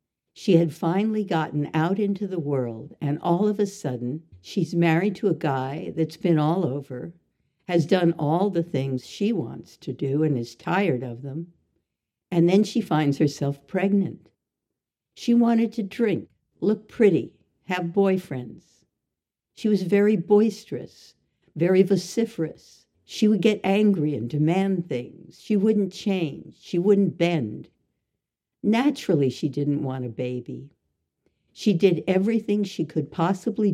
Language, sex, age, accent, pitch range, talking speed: English, female, 60-79, American, 145-200 Hz, 145 wpm